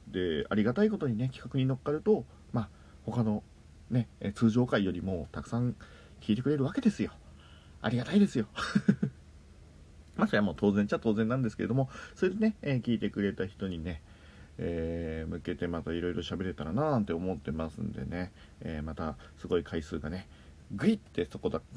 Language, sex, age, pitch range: Japanese, male, 40-59, 80-110 Hz